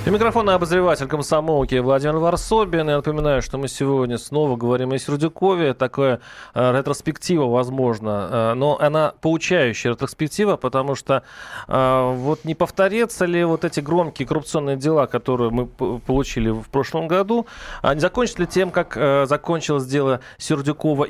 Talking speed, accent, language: 150 wpm, native, Russian